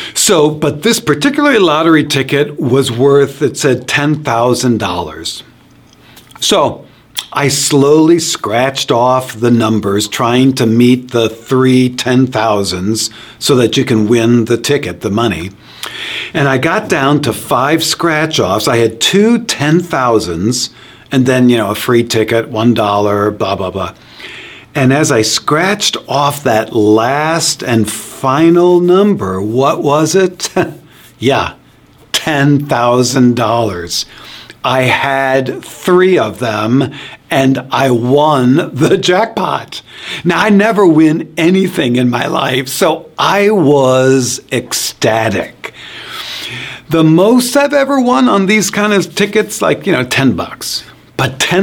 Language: English